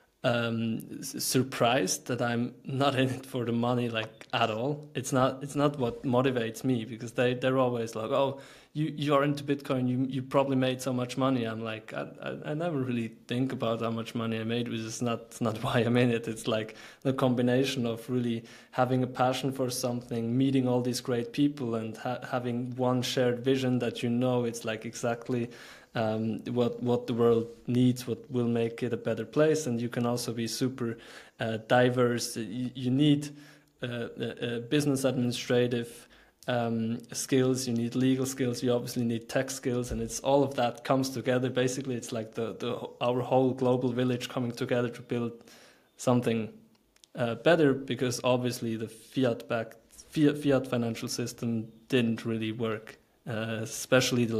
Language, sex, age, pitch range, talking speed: English, male, 20-39, 115-130 Hz, 180 wpm